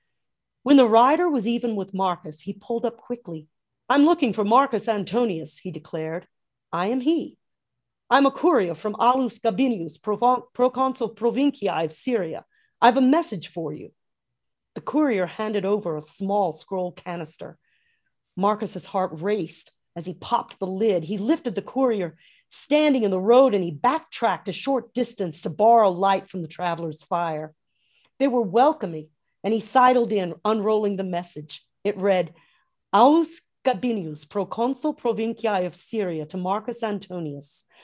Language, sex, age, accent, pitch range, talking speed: English, female, 40-59, American, 175-245 Hz, 150 wpm